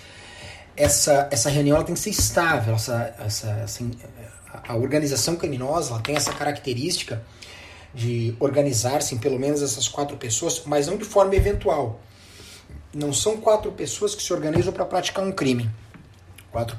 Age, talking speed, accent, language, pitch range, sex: 30-49, 155 wpm, Brazilian, Portuguese, 110-165 Hz, male